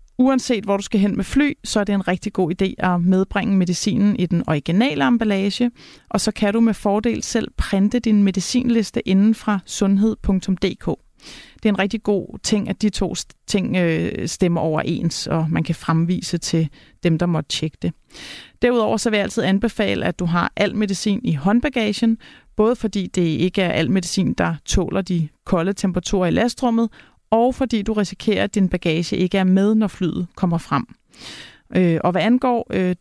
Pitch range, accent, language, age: 175-225 Hz, native, Danish, 30-49